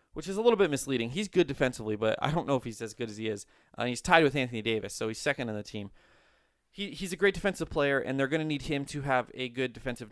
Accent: American